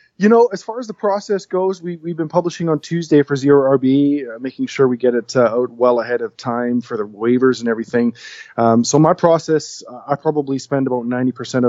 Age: 20-39